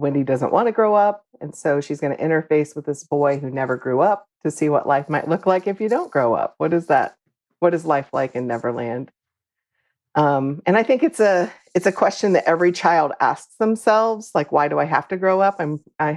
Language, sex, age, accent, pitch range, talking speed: English, female, 40-59, American, 130-175 Hz, 240 wpm